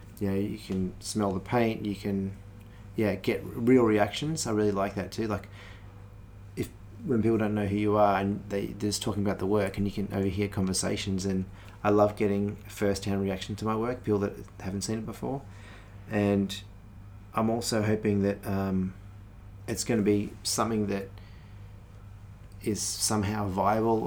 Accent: Australian